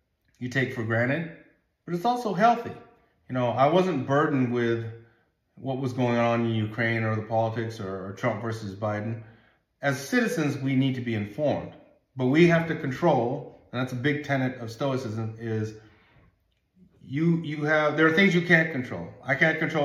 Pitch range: 115-140 Hz